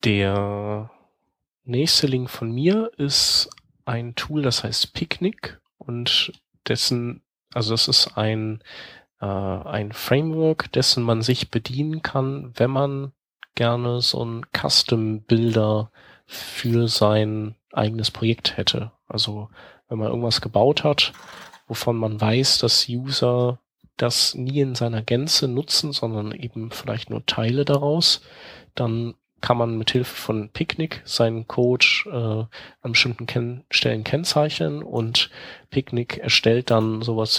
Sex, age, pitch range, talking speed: male, 30-49, 110-130 Hz, 125 wpm